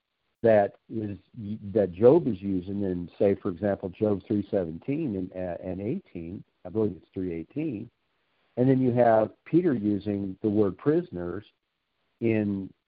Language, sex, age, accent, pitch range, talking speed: English, male, 50-69, American, 95-125 Hz, 145 wpm